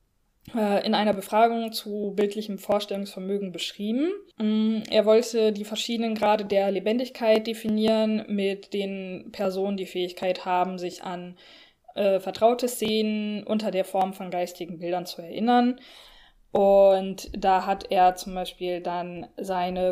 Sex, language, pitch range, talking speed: female, German, 190-220 Hz, 125 wpm